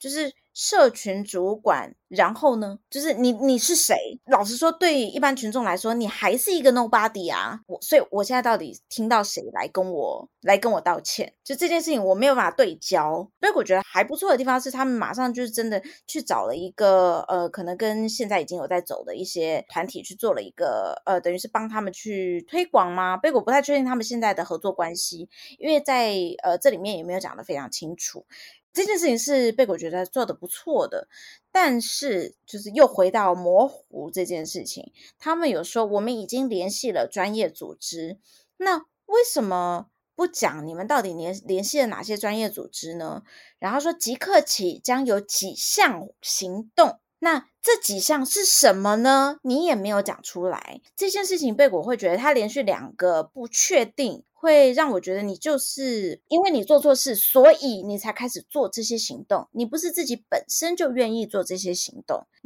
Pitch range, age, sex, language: 195-285 Hz, 20-39, female, Chinese